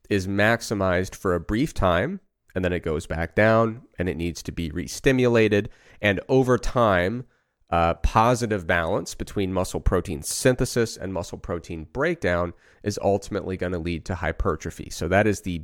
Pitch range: 85-105 Hz